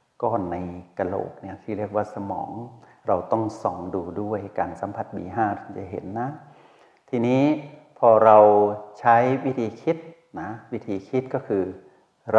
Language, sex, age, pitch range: Thai, male, 60-79, 100-120 Hz